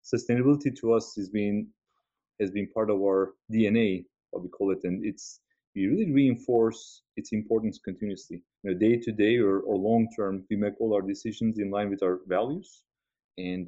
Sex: male